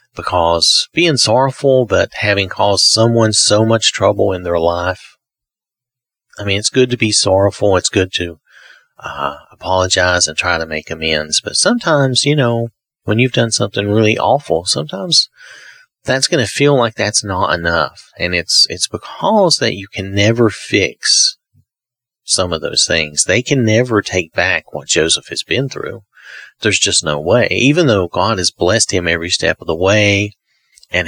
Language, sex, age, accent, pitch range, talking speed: English, male, 40-59, American, 85-125 Hz, 170 wpm